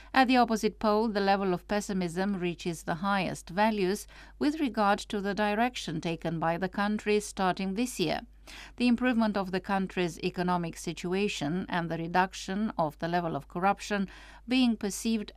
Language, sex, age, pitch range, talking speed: English, female, 50-69, 180-220 Hz, 160 wpm